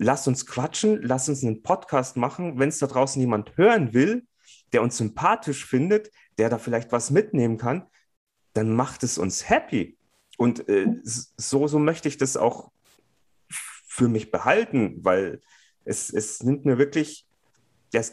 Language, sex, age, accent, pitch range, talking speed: German, male, 30-49, German, 120-145 Hz, 160 wpm